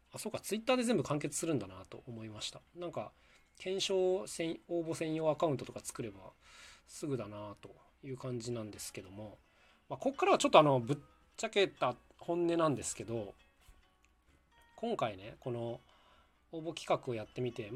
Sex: male